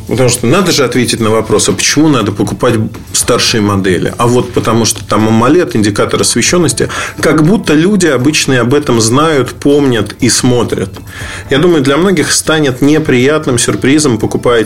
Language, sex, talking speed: Russian, male, 155 wpm